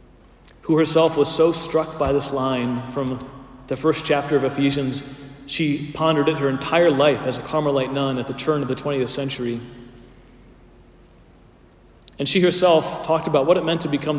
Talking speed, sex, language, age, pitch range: 170 wpm, male, English, 40-59, 135-165 Hz